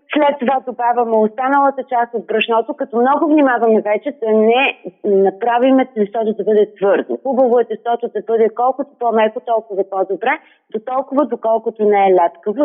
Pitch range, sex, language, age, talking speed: 210-270 Hz, female, Bulgarian, 30-49, 155 wpm